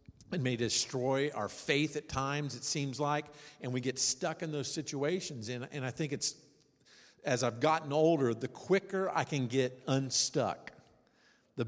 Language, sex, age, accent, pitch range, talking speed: English, male, 50-69, American, 120-140 Hz, 165 wpm